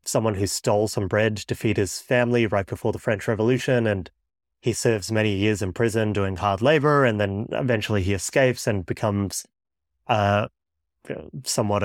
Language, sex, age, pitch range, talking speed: English, male, 30-49, 100-120 Hz, 165 wpm